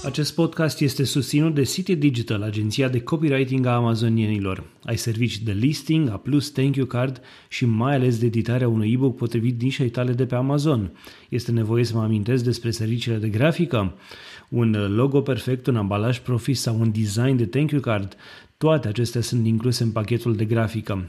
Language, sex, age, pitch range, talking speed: Romanian, male, 30-49, 110-130 Hz, 180 wpm